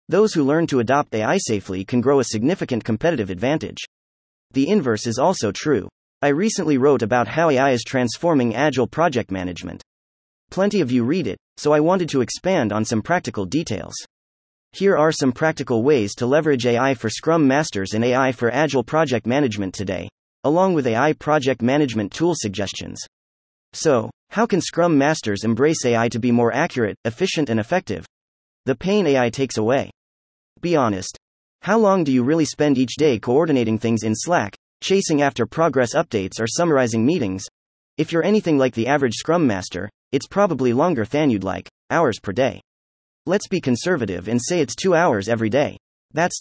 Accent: American